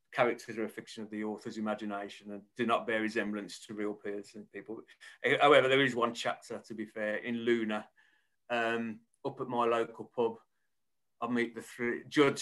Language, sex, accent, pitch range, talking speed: English, male, British, 100-115 Hz, 185 wpm